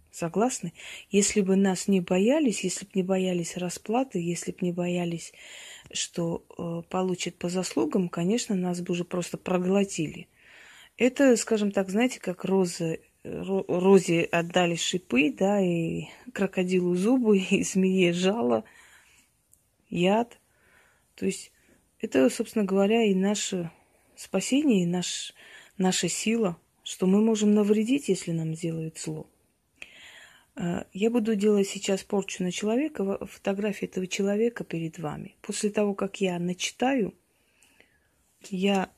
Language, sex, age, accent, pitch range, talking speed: Russian, female, 30-49, native, 175-205 Hz, 120 wpm